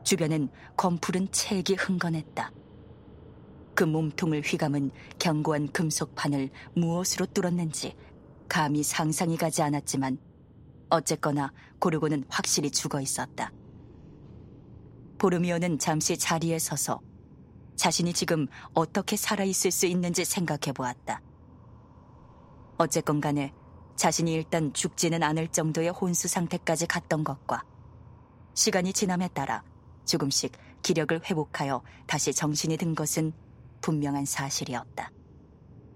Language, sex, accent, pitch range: Korean, female, native, 135-180 Hz